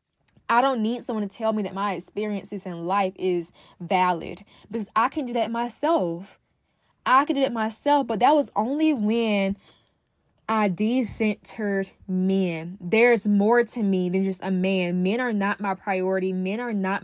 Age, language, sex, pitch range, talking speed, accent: 10-29, English, female, 190-235 Hz, 175 wpm, American